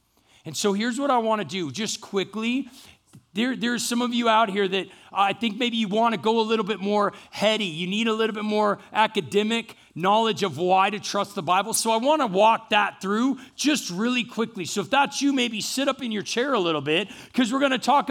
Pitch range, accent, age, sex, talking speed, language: 215-265 Hz, American, 40-59, male, 235 wpm, English